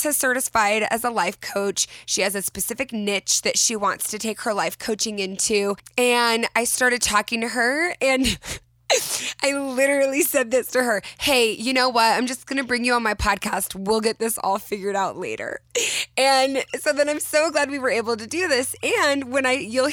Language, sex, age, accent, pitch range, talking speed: English, female, 20-39, American, 205-265 Hz, 210 wpm